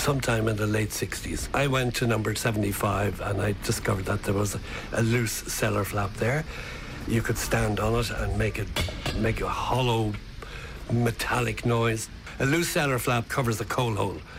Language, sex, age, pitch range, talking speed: English, male, 60-79, 110-125 Hz, 170 wpm